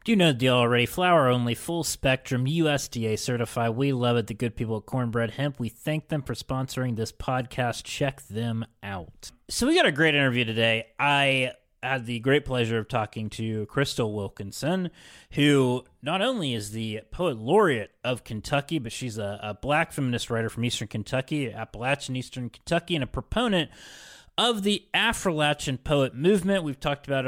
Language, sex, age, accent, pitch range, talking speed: English, male, 30-49, American, 115-145 Hz, 180 wpm